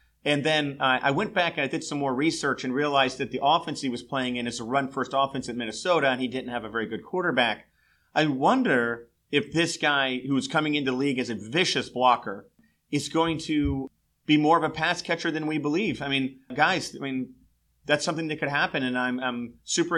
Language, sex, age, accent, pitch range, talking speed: English, male, 40-59, American, 130-155 Hz, 230 wpm